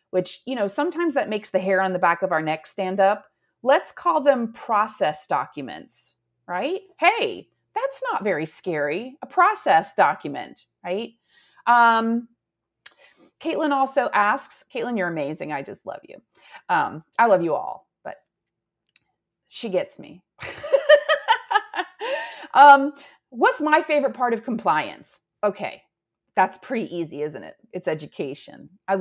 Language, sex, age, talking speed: English, female, 30-49, 140 wpm